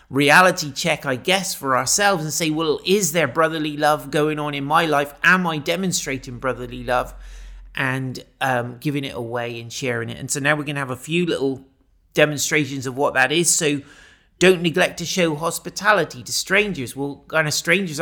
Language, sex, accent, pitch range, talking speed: English, male, British, 130-160 Hz, 195 wpm